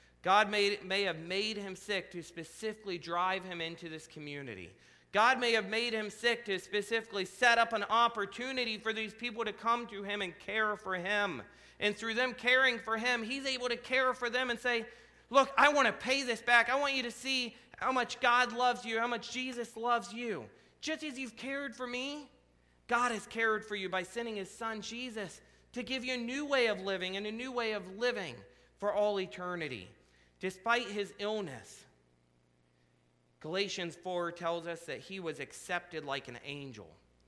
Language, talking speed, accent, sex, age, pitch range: English, 195 wpm, American, male, 40-59, 170-240 Hz